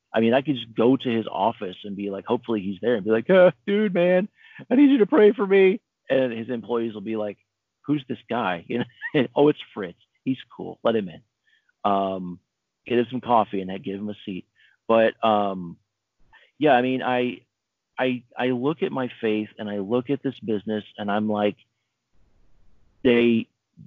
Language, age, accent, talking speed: English, 40-59, American, 200 wpm